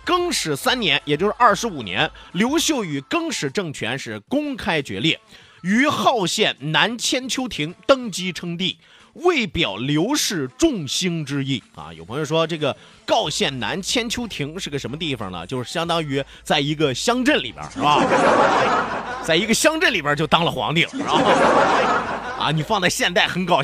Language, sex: Chinese, male